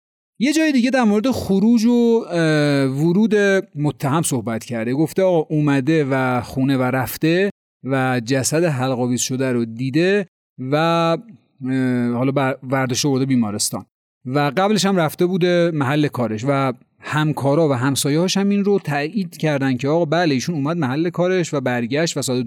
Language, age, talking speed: Persian, 40-59, 150 wpm